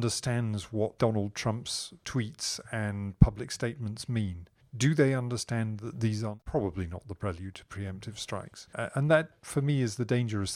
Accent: British